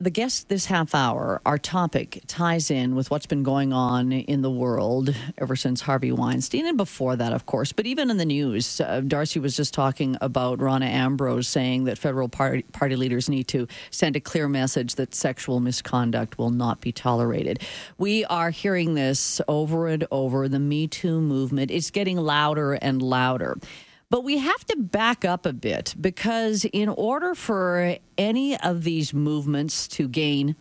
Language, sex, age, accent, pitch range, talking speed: English, female, 50-69, American, 135-190 Hz, 180 wpm